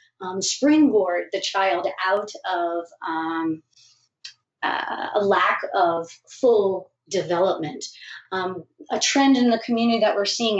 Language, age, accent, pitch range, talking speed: English, 40-59, American, 180-235 Hz, 125 wpm